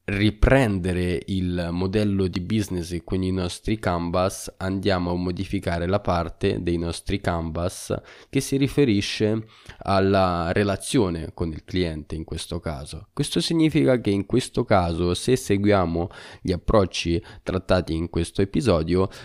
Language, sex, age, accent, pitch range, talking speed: Italian, male, 20-39, native, 85-100 Hz, 130 wpm